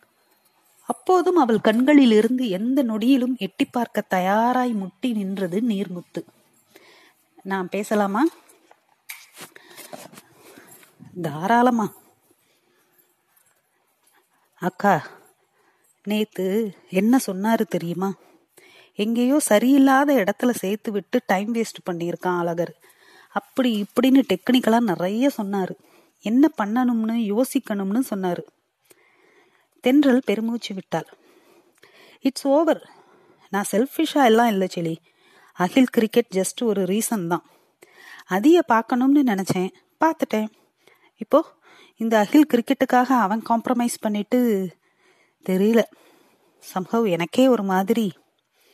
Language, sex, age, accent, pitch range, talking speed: Tamil, female, 30-49, native, 195-270 Hz, 85 wpm